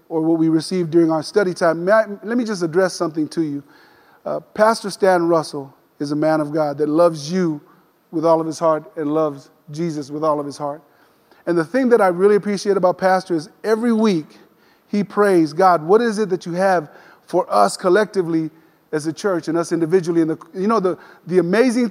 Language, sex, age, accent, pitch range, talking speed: English, male, 30-49, American, 165-220 Hz, 205 wpm